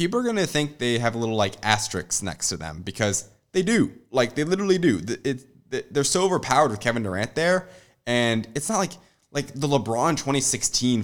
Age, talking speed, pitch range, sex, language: 20-39, 205 wpm, 95-135 Hz, male, English